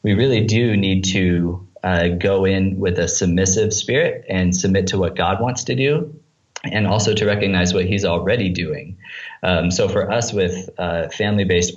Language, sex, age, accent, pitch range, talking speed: English, male, 20-39, American, 90-100 Hz, 180 wpm